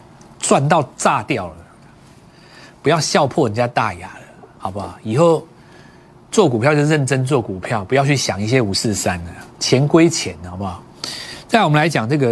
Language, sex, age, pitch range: Chinese, male, 30-49, 110-165 Hz